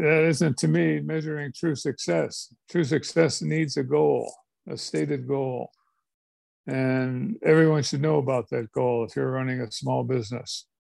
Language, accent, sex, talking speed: English, American, male, 155 wpm